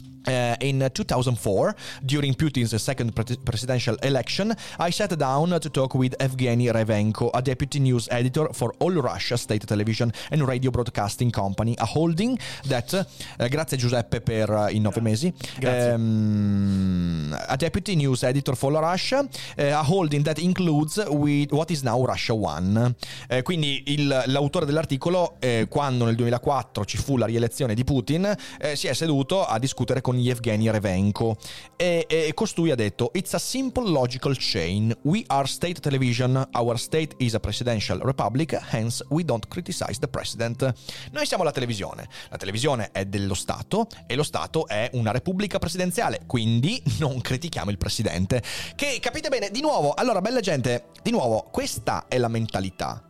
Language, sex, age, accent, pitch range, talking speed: Italian, male, 30-49, native, 115-150 Hz, 155 wpm